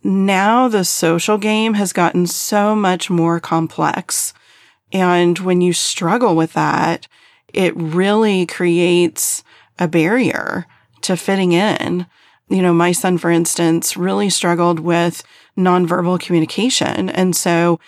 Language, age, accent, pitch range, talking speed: English, 30-49, American, 170-195 Hz, 125 wpm